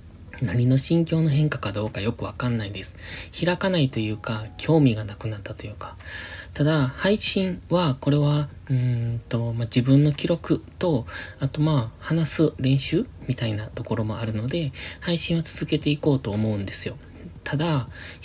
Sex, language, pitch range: male, Japanese, 105-150 Hz